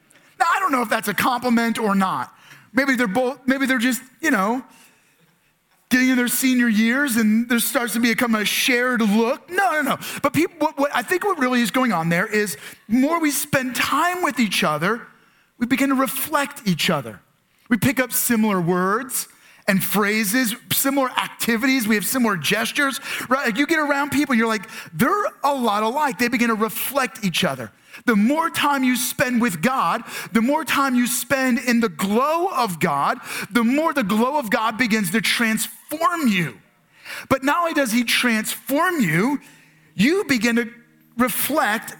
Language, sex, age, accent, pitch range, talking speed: English, male, 30-49, American, 185-260 Hz, 180 wpm